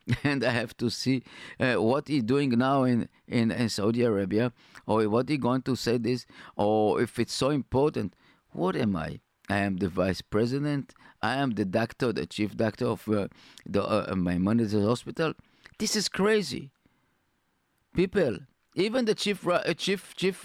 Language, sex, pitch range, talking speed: English, male, 105-140 Hz, 170 wpm